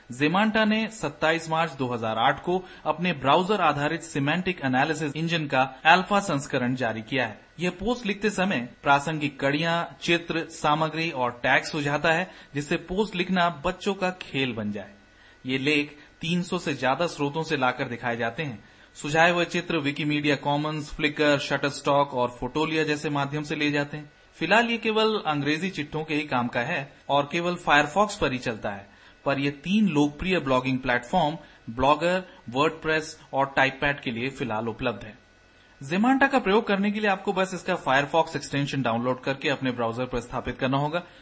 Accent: native